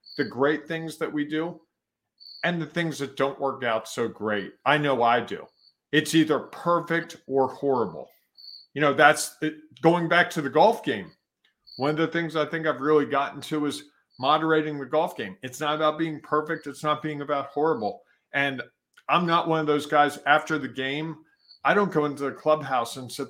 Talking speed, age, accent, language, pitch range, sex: 195 wpm, 50-69, American, English, 140-175 Hz, male